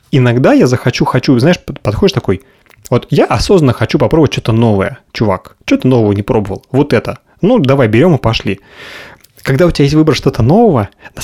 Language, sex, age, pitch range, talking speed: Russian, male, 30-49, 110-140 Hz, 180 wpm